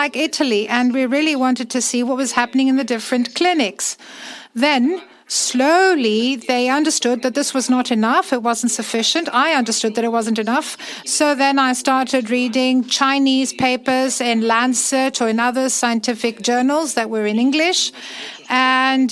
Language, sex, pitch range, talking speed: Greek, female, 240-280 Hz, 165 wpm